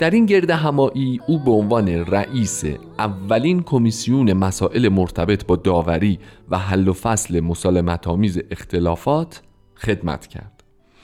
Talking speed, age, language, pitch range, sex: 120 wpm, 40-59, Persian, 95-135 Hz, male